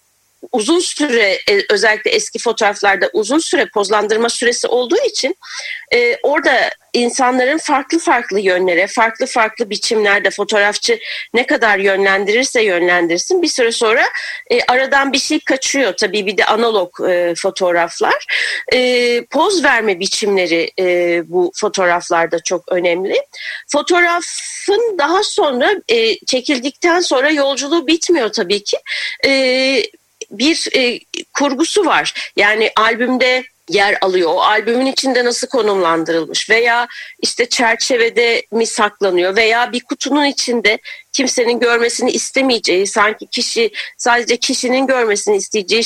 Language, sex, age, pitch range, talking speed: Turkish, female, 40-59, 205-305 Hz, 110 wpm